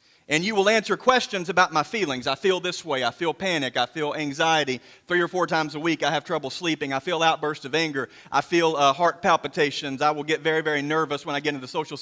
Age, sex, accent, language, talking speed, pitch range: 40-59, male, American, English, 250 wpm, 150-215 Hz